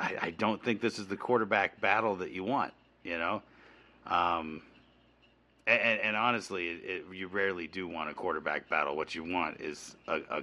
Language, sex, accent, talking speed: English, male, American, 180 wpm